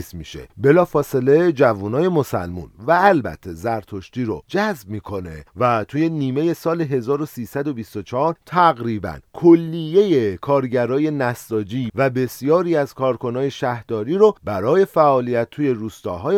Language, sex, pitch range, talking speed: Persian, male, 110-150 Hz, 110 wpm